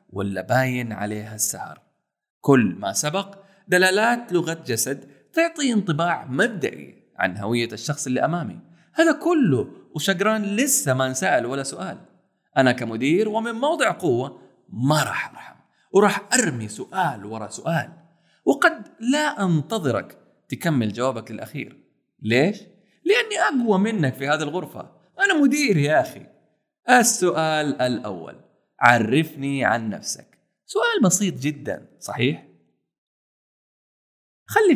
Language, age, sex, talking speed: Arabic, 30-49, male, 115 wpm